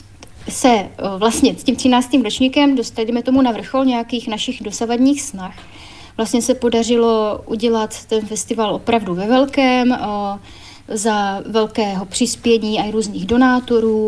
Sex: female